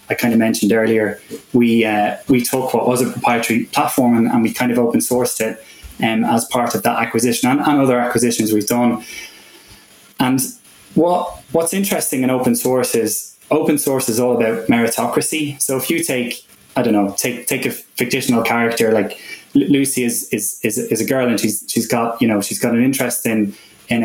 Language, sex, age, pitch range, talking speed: English, male, 20-39, 115-130 Hz, 200 wpm